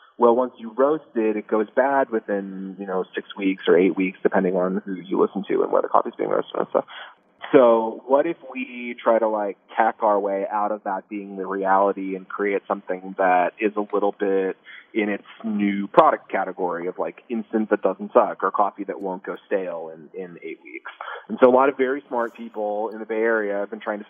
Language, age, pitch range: English, 30-49, 100-135 Hz